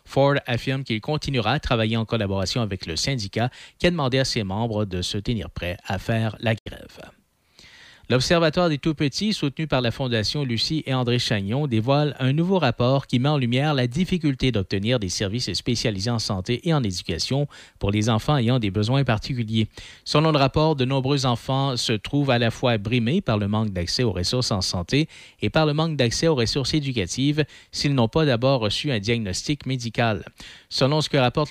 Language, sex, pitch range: French, male, 105-135 Hz